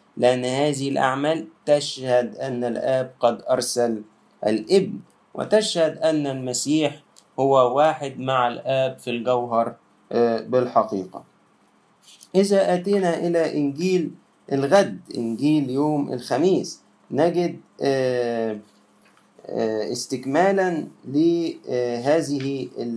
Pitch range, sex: 120-160 Hz, male